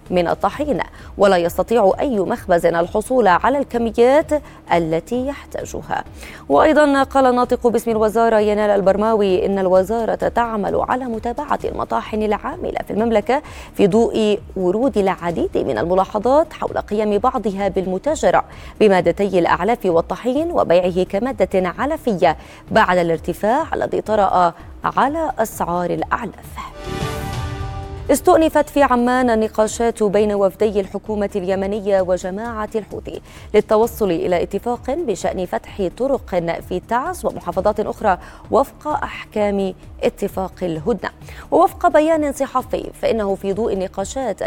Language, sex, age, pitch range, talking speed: Arabic, female, 20-39, 190-245 Hz, 110 wpm